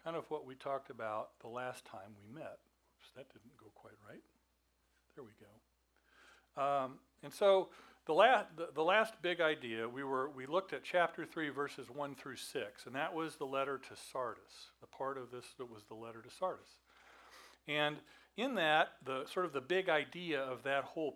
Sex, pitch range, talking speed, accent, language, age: male, 125-160 Hz, 200 wpm, American, English, 50-69